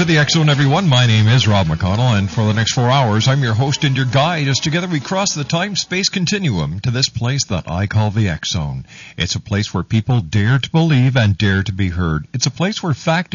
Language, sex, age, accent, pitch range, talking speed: English, male, 50-69, American, 100-135 Hz, 255 wpm